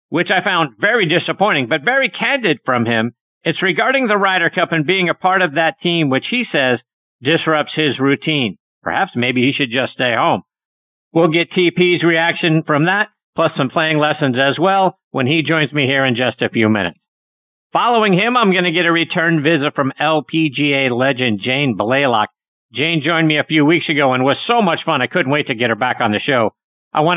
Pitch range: 135-175 Hz